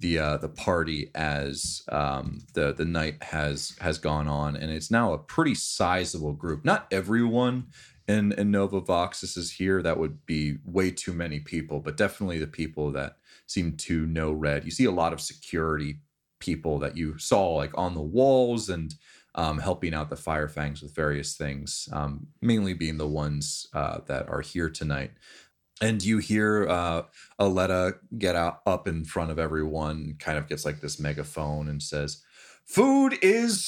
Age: 30-49